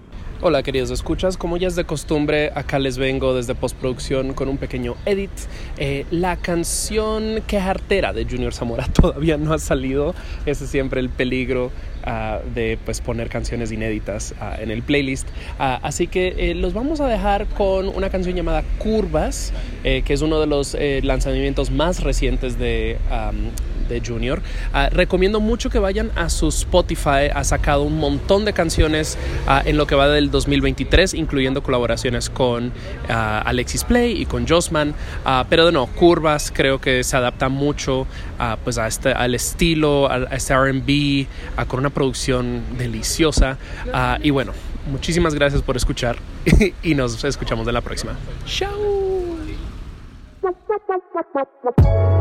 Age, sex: 20-39, male